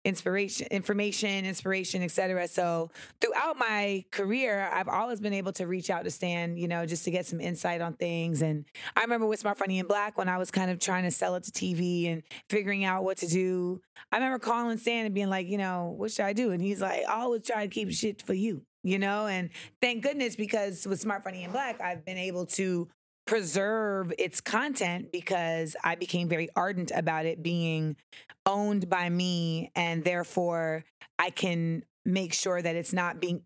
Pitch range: 170-205 Hz